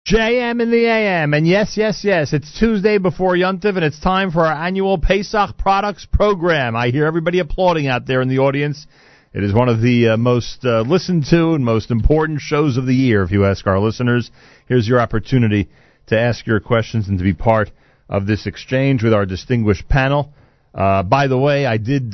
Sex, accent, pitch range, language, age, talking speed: male, American, 105-145 Hz, English, 40-59, 205 wpm